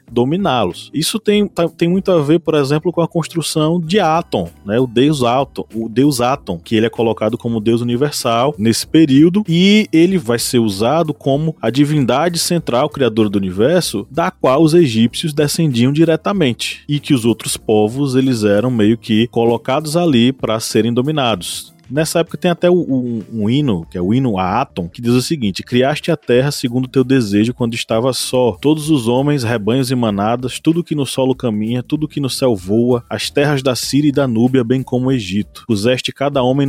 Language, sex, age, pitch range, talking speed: Portuguese, male, 20-39, 115-150 Hz, 195 wpm